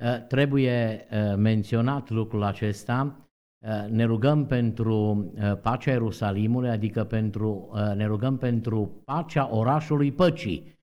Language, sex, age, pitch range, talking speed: Romanian, male, 50-69, 115-160 Hz, 120 wpm